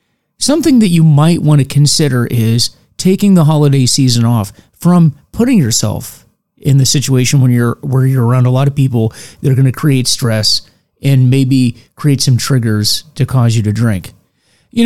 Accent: American